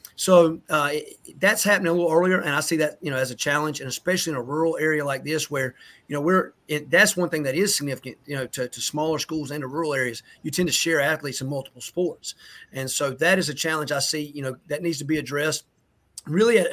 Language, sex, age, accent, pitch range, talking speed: English, male, 30-49, American, 140-165 Hz, 250 wpm